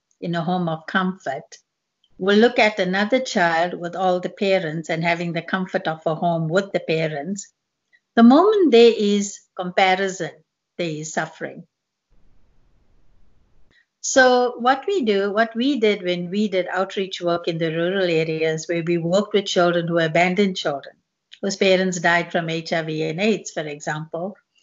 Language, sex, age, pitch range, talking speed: English, female, 60-79, 170-220 Hz, 160 wpm